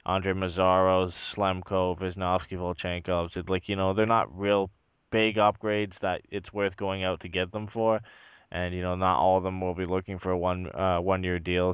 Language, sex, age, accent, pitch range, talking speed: English, male, 20-39, American, 85-95 Hz, 205 wpm